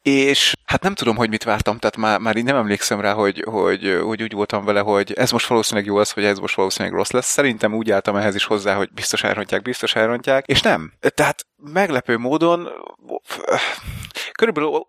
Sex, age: male, 30-49